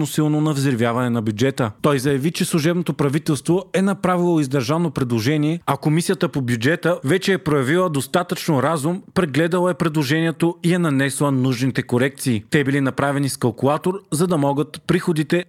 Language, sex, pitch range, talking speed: Bulgarian, male, 130-170 Hz, 155 wpm